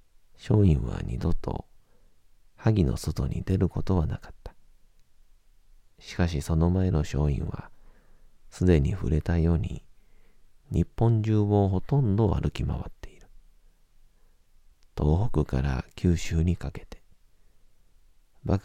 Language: Japanese